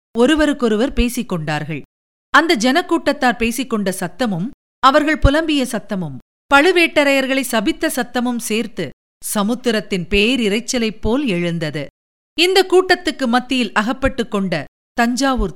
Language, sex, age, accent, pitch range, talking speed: Tamil, female, 50-69, native, 195-280 Hz, 85 wpm